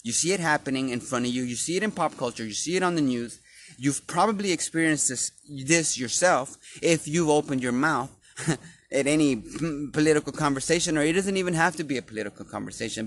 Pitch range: 125-165 Hz